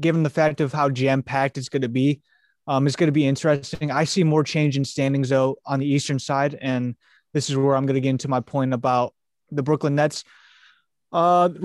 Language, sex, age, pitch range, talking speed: English, male, 20-39, 130-150 Hz, 225 wpm